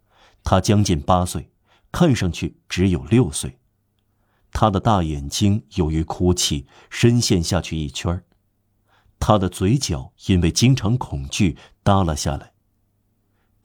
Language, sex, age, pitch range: Chinese, male, 50-69, 85-105 Hz